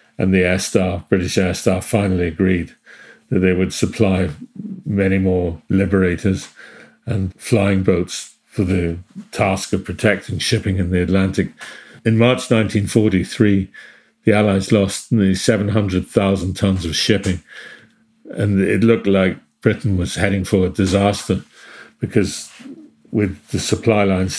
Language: English